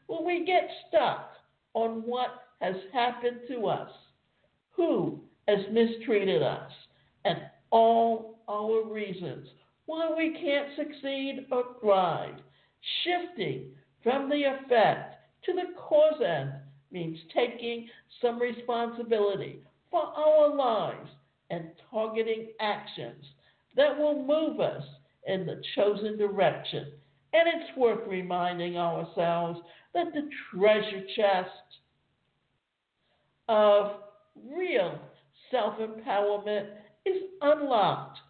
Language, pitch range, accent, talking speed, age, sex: English, 175-265 Hz, American, 100 wpm, 60-79, male